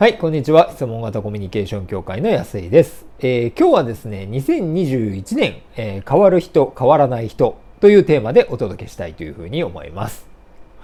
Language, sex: Japanese, male